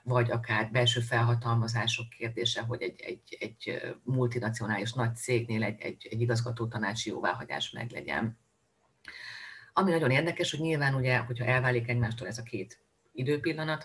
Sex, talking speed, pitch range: female, 140 wpm, 115-125 Hz